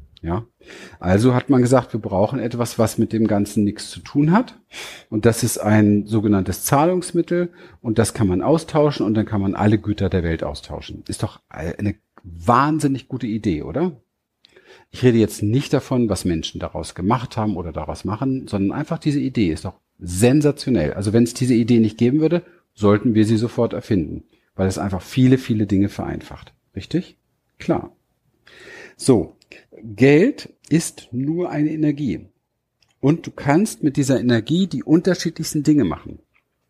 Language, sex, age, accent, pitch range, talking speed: German, male, 40-59, German, 100-135 Hz, 165 wpm